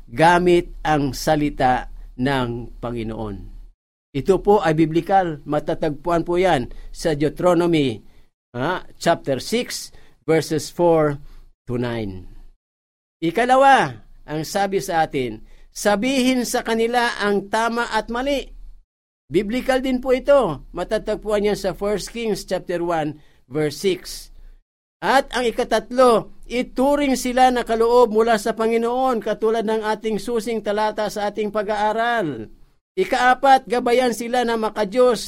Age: 50-69